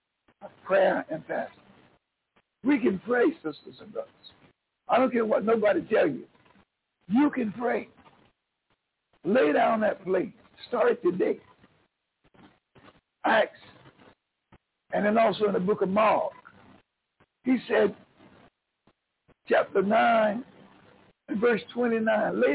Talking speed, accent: 115 wpm, American